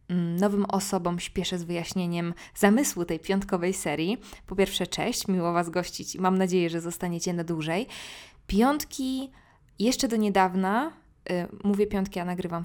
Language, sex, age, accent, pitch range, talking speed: Polish, female, 20-39, native, 180-215 Hz, 140 wpm